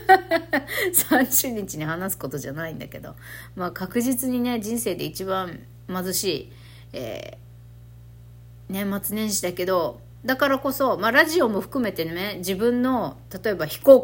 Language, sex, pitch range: Japanese, female, 160-235 Hz